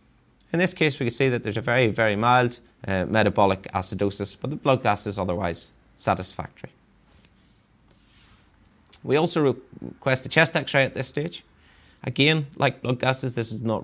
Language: English